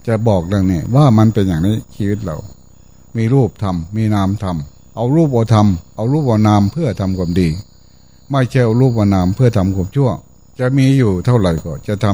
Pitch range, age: 95-125 Hz, 60-79